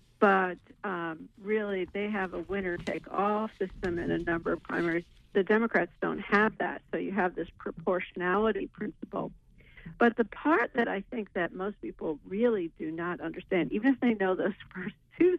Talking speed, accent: 180 wpm, American